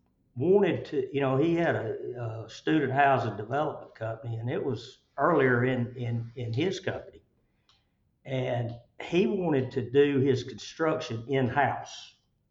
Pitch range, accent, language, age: 115-135 Hz, American, English, 60-79